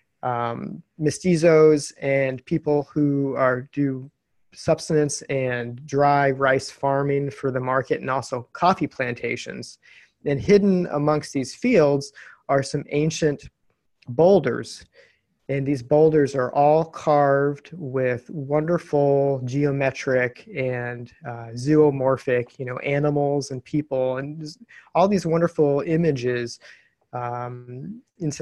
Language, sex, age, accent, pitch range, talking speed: English, male, 30-49, American, 130-155 Hz, 110 wpm